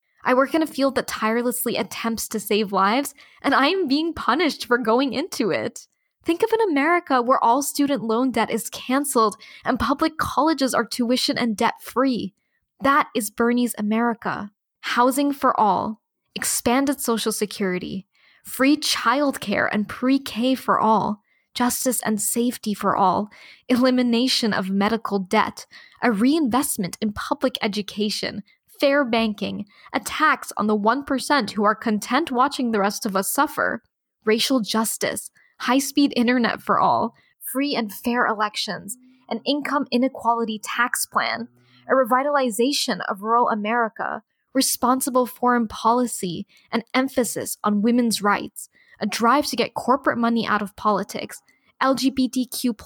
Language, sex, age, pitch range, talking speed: English, female, 10-29, 215-265 Hz, 140 wpm